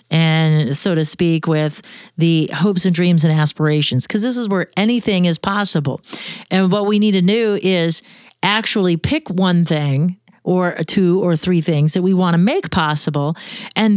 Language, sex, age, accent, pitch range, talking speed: English, female, 40-59, American, 175-225 Hz, 175 wpm